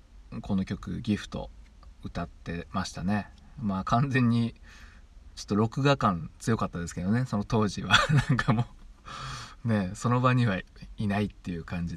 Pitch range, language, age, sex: 85-120 Hz, Japanese, 20-39, male